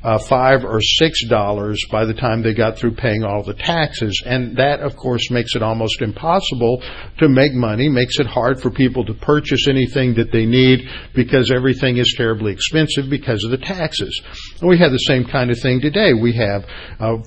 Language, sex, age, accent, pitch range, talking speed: English, male, 60-79, American, 110-135 Hz, 200 wpm